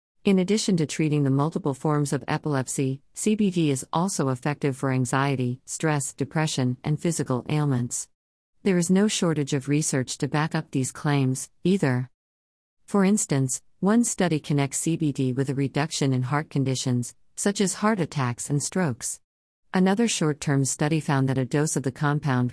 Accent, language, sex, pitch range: American, English, female, 130-165 Hz